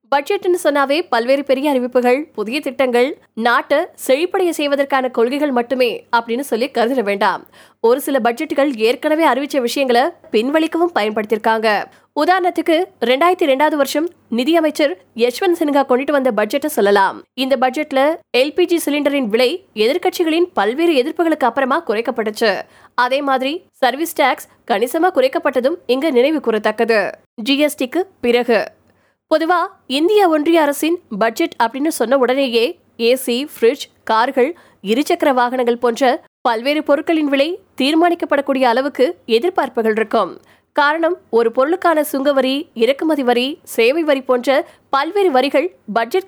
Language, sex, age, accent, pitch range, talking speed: Tamil, female, 20-39, native, 245-315 Hz, 85 wpm